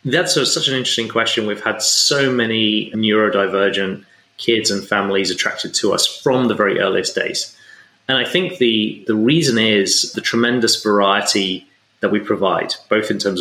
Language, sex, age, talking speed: English, male, 30-49, 170 wpm